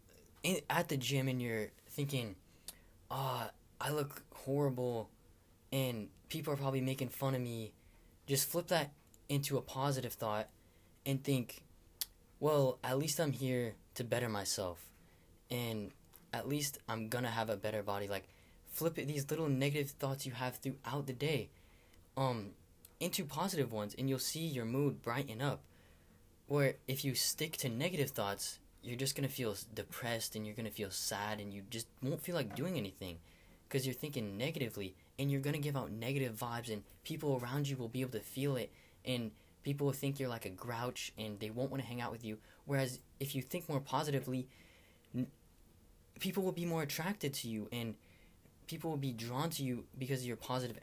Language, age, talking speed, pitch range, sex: English, 10-29, 185 wpm, 100-140 Hz, male